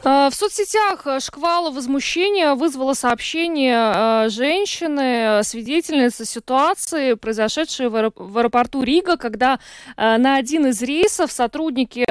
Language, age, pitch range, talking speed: Russian, 20-39, 220-275 Hz, 95 wpm